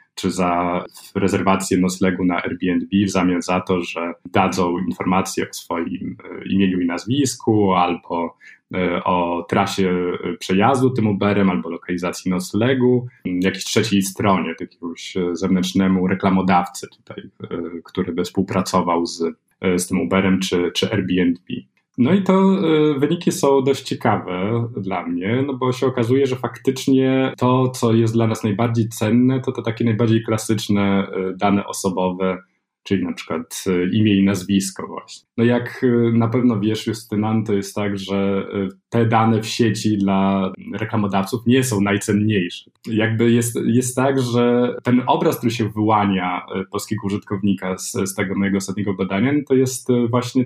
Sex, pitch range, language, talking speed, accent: male, 95-120 Hz, Polish, 145 wpm, native